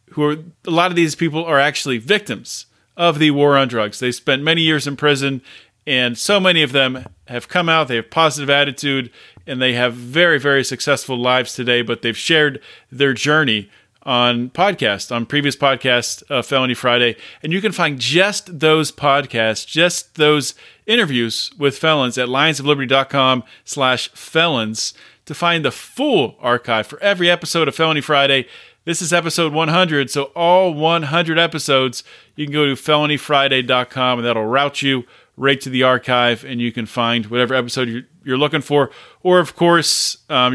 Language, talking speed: English, 170 wpm